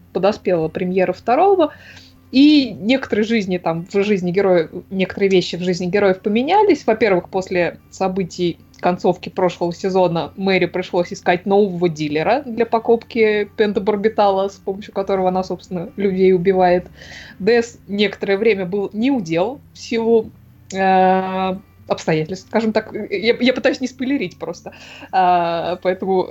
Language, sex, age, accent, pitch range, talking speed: Russian, female, 20-39, native, 185-235 Hz, 125 wpm